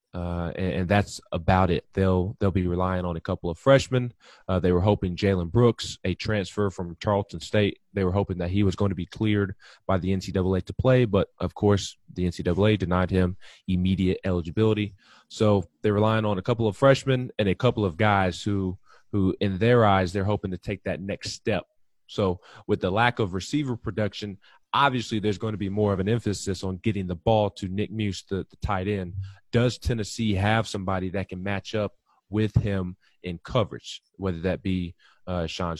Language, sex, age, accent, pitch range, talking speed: English, male, 20-39, American, 95-110 Hz, 200 wpm